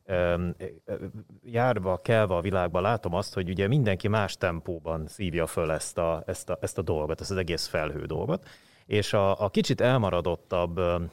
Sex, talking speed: male, 160 wpm